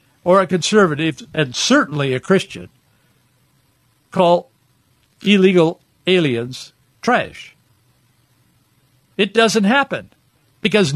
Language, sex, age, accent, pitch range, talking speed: English, male, 60-79, American, 145-200 Hz, 80 wpm